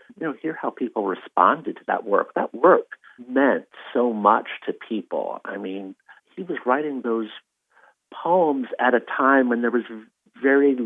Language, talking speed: English, 165 wpm